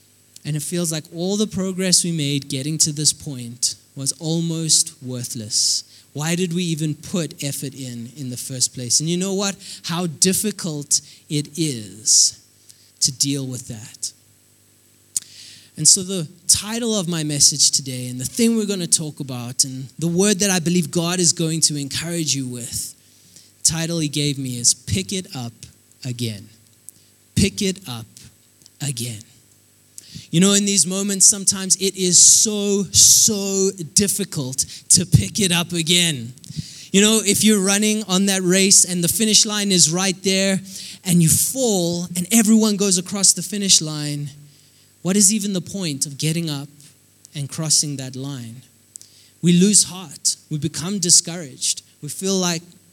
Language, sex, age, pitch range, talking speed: English, male, 20-39, 130-185 Hz, 165 wpm